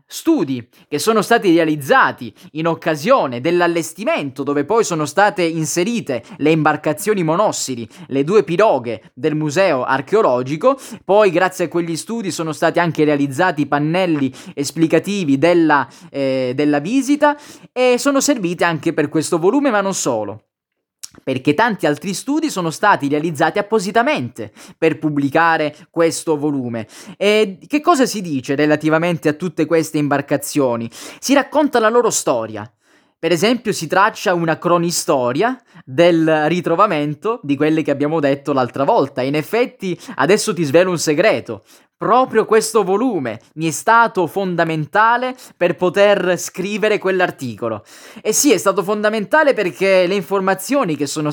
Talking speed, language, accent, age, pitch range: 140 wpm, Italian, native, 20-39, 150-200 Hz